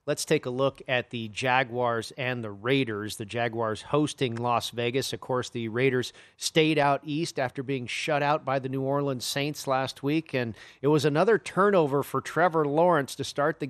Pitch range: 125-150 Hz